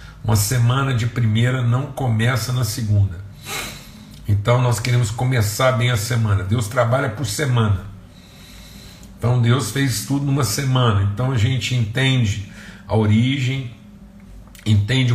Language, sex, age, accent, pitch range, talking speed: Portuguese, male, 60-79, Brazilian, 105-130 Hz, 125 wpm